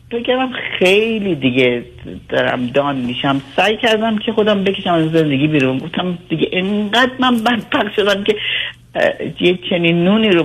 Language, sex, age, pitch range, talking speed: Persian, female, 50-69, 150-210 Hz, 150 wpm